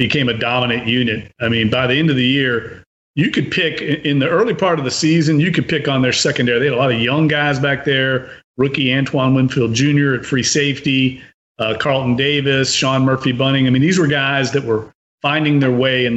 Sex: male